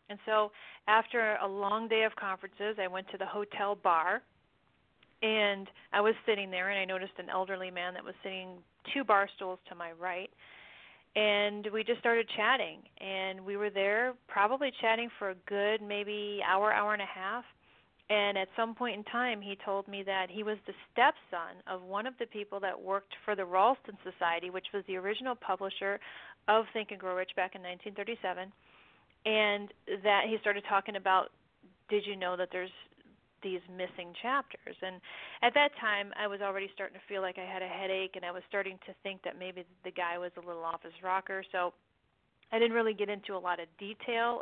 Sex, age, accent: female, 40-59, American